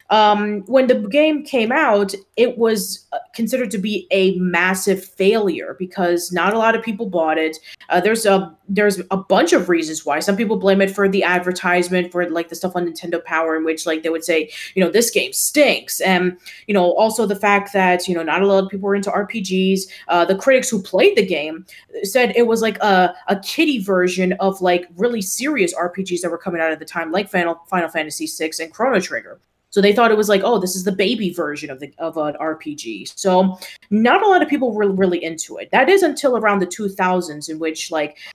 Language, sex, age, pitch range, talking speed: English, female, 20-39, 170-205 Hz, 225 wpm